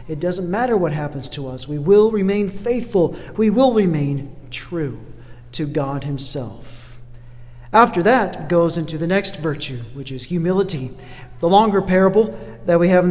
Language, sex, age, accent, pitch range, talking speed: English, male, 40-59, American, 130-210 Hz, 160 wpm